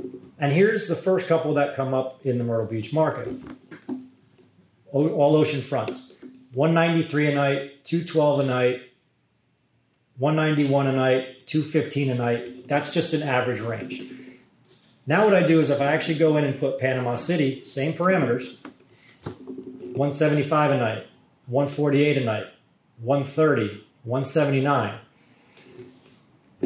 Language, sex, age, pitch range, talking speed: English, male, 30-49, 130-155 Hz, 130 wpm